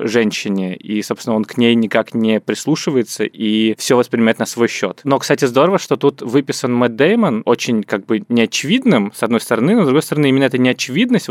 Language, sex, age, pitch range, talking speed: Russian, male, 20-39, 105-135 Hz, 195 wpm